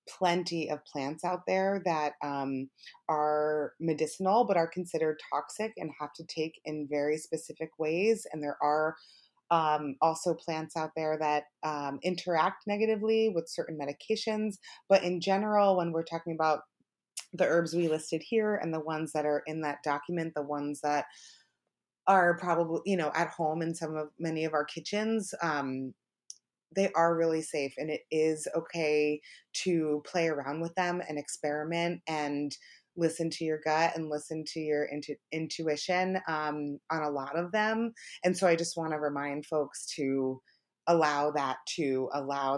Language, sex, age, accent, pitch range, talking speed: English, female, 30-49, American, 145-170 Hz, 165 wpm